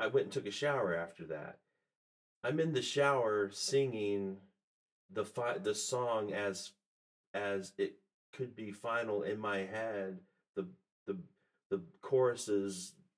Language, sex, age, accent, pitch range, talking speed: English, male, 40-59, American, 90-115 Hz, 135 wpm